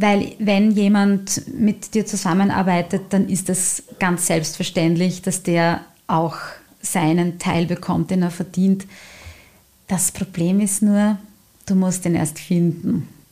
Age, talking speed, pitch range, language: 30-49, 130 wpm, 185-215 Hz, German